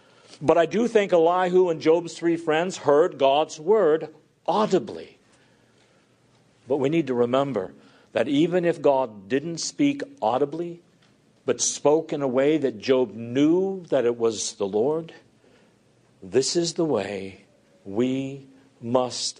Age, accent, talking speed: 60-79, American, 135 wpm